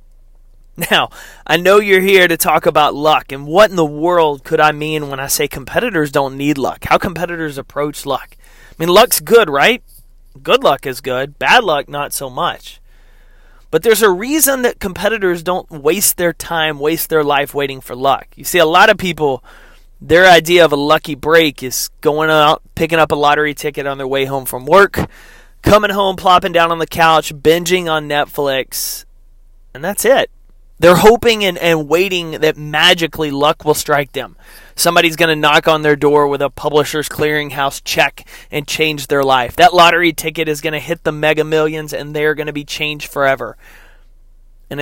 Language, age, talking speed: English, 30-49, 190 wpm